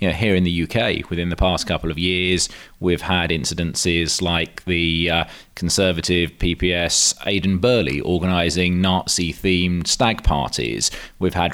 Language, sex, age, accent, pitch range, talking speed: English, male, 30-49, British, 85-100 Hz, 145 wpm